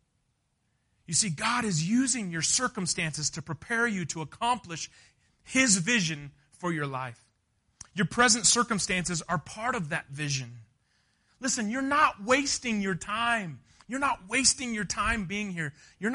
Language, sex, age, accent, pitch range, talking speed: English, male, 30-49, American, 135-210 Hz, 145 wpm